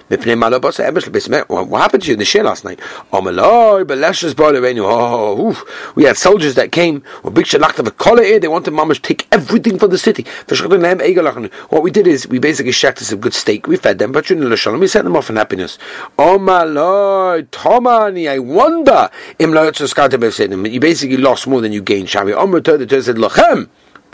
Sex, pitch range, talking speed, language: male, 165-275 Hz, 160 wpm, English